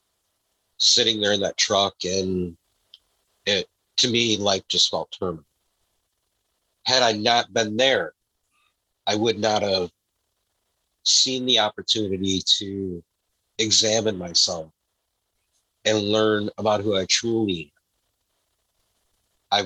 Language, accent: English, American